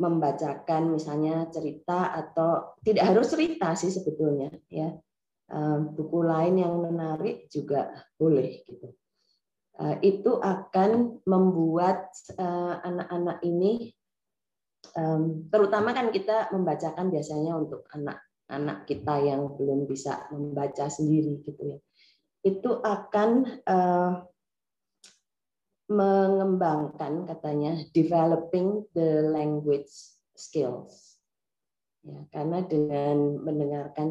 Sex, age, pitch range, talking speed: female, 20-39, 150-185 Hz, 90 wpm